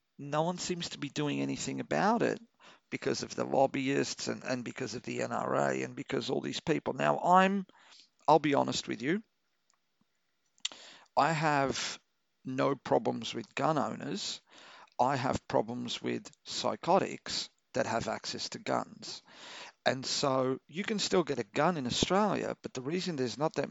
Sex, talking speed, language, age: male, 165 wpm, English, 50-69